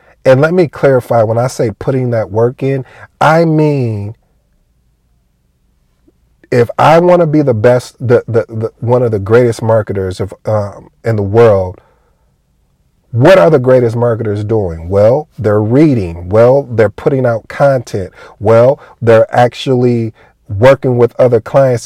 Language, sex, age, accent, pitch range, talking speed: English, male, 40-59, American, 105-130 Hz, 150 wpm